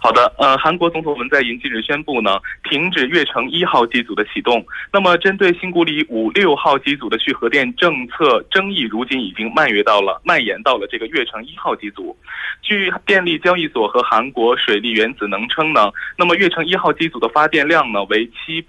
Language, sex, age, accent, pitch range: Korean, male, 20-39, Chinese, 130-185 Hz